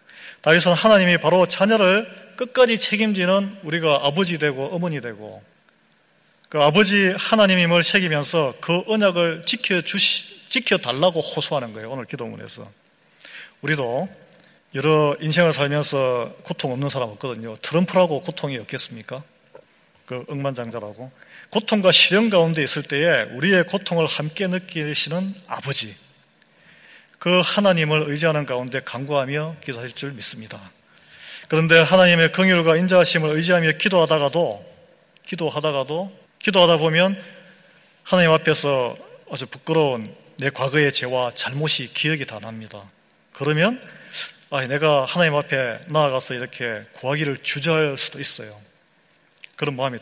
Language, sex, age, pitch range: Korean, male, 40-59, 135-180 Hz